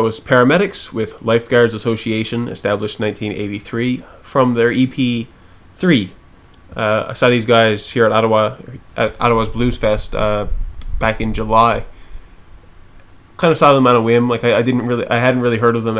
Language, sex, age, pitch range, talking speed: English, male, 20-39, 105-120 Hz, 175 wpm